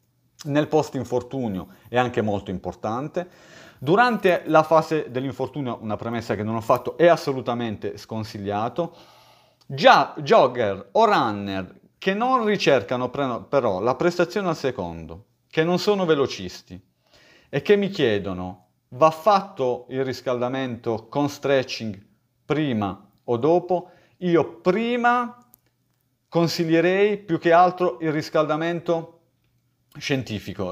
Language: Italian